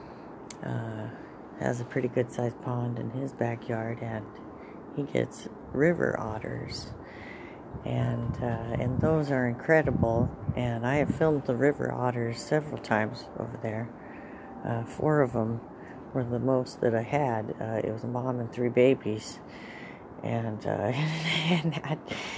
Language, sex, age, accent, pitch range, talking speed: English, female, 50-69, American, 115-150 Hz, 140 wpm